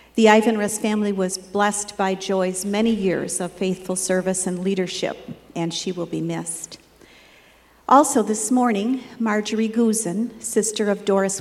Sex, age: female, 50-69